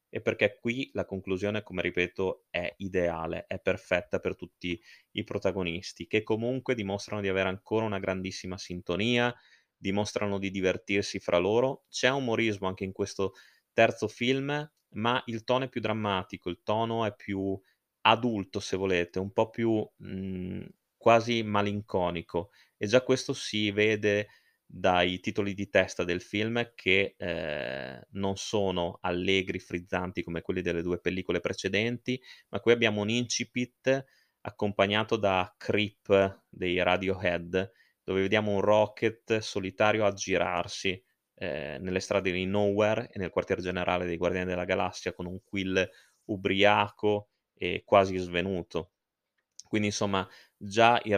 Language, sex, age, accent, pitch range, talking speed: Italian, male, 20-39, native, 95-110 Hz, 140 wpm